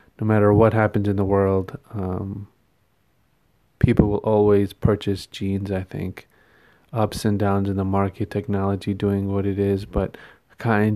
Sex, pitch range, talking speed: male, 100-110 Hz, 155 wpm